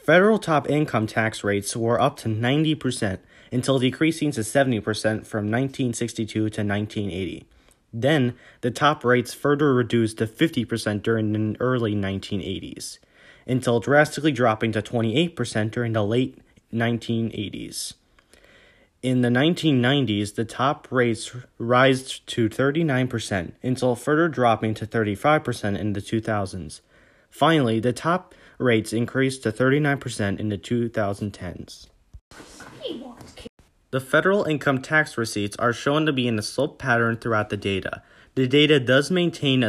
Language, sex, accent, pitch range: English, male, American, 110-135 Hz